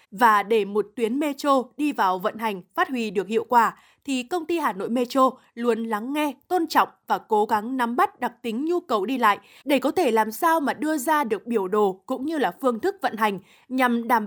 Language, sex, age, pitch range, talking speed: Vietnamese, female, 20-39, 225-310 Hz, 235 wpm